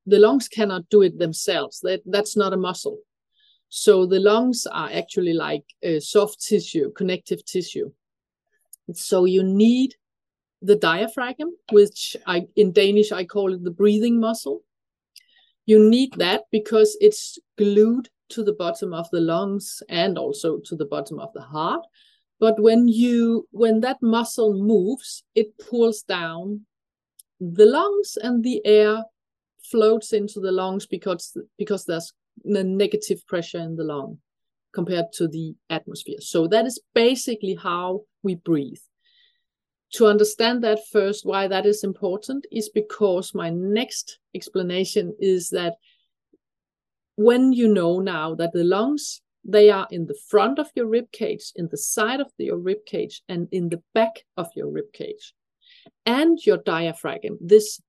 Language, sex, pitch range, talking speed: Swedish, female, 190-235 Hz, 150 wpm